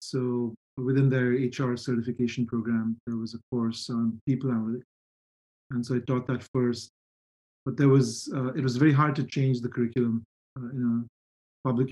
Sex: male